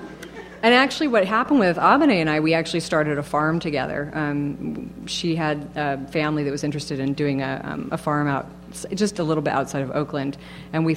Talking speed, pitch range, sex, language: 210 wpm, 150-180 Hz, female, English